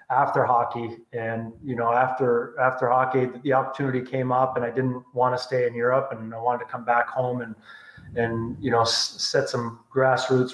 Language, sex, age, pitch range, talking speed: English, male, 30-49, 115-130 Hz, 205 wpm